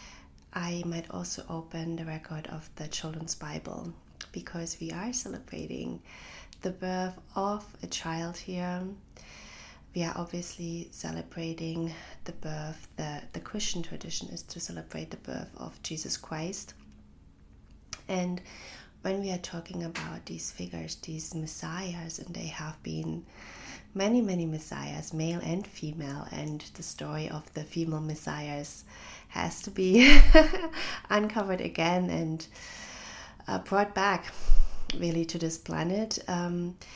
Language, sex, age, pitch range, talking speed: English, female, 20-39, 145-185 Hz, 125 wpm